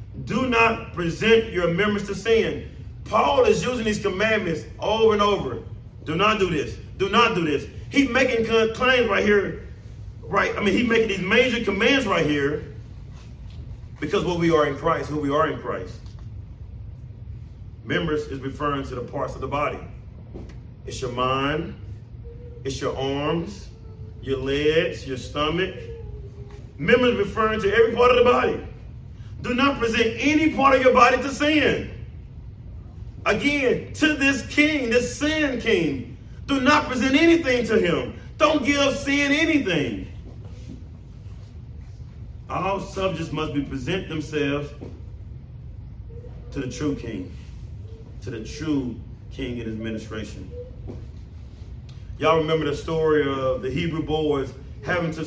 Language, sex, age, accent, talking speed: English, male, 40-59, American, 145 wpm